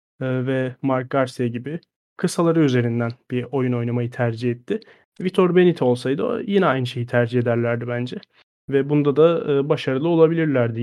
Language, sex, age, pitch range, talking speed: Turkish, male, 30-49, 125-150 Hz, 145 wpm